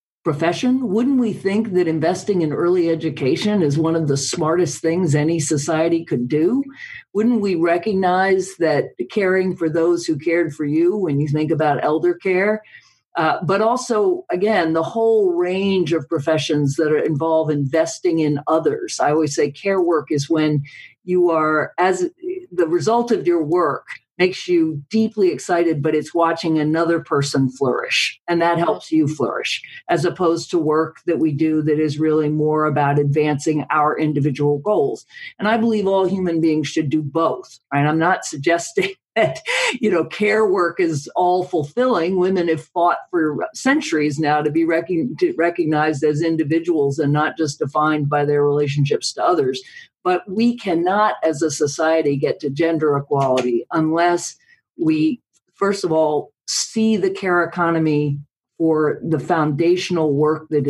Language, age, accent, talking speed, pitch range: English, 50-69, American, 160 wpm, 155-200 Hz